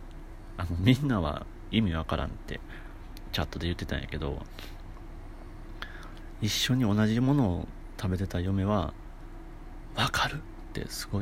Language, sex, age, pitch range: Japanese, male, 40-59, 85-110 Hz